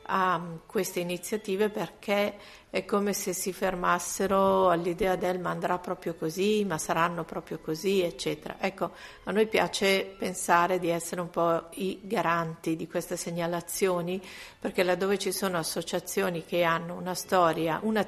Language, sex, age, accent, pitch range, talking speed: Italian, female, 50-69, native, 175-205 Hz, 145 wpm